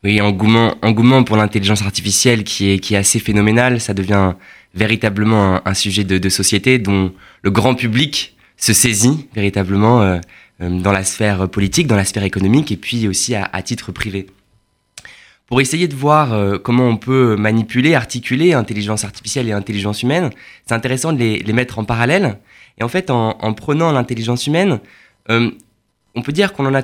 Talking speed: 185 wpm